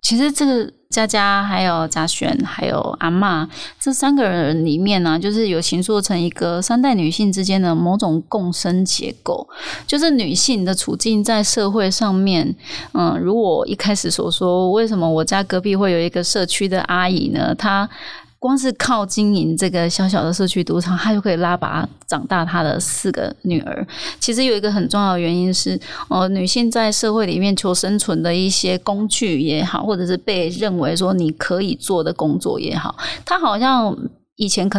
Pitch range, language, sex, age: 180-220 Hz, Chinese, female, 20-39